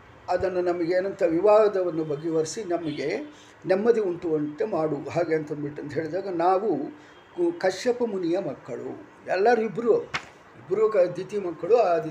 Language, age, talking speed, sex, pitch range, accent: English, 50-69, 65 wpm, male, 155-205 Hz, Indian